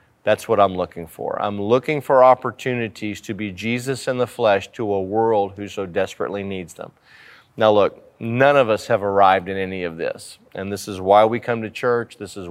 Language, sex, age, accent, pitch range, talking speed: English, male, 40-59, American, 100-120 Hz, 210 wpm